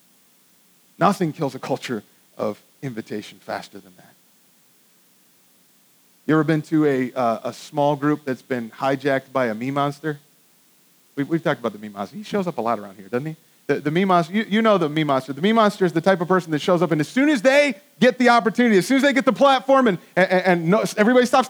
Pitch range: 155-235 Hz